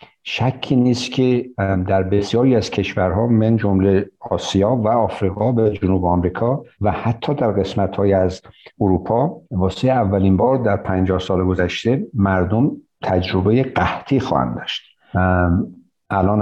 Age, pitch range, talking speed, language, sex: 60-79, 95-115 Hz, 125 wpm, Persian, male